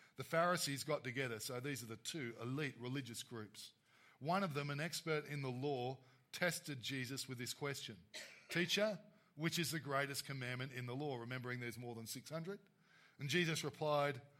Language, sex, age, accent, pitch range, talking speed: English, male, 40-59, Australian, 135-175 Hz, 175 wpm